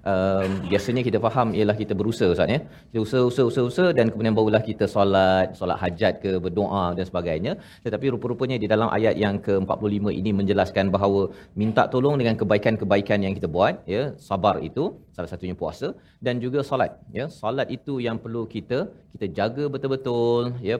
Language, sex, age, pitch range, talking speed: Malayalam, male, 30-49, 105-125 Hz, 175 wpm